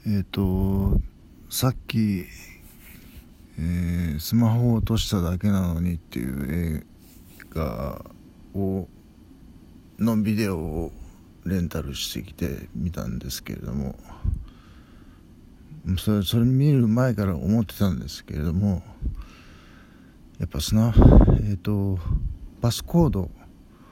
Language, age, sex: Japanese, 60-79, male